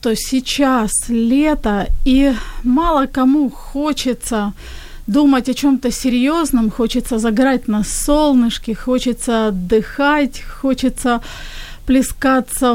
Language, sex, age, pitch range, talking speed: Ukrainian, female, 30-49, 225-285 Hz, 90 wpm